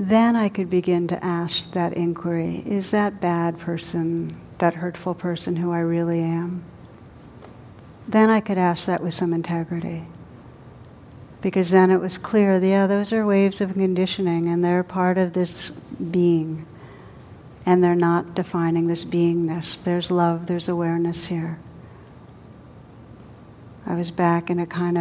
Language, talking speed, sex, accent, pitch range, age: English, 145 wpm, female, American, 165-185 Hz, 60-79